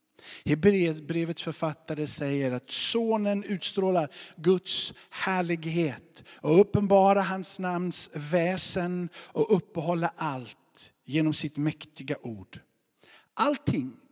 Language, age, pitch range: Swedish, 60-79, 140-185 Hz